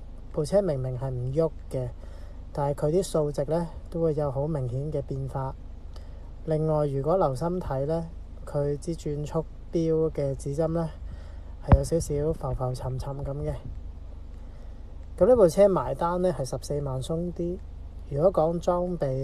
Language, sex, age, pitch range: Chinese, male, 20-39, 105-160 Hz